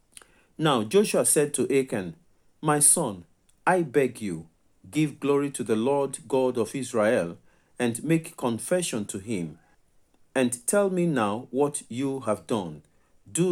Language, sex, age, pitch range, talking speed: English, male, 40-59, 115-155 Hz, 140 wpm